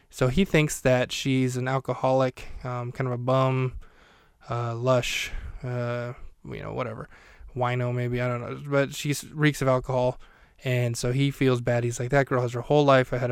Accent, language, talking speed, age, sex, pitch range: American, English, 190 wpm, 20-39, male, 125-145 Hz